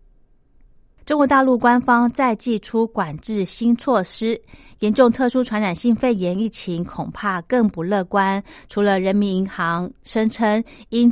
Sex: female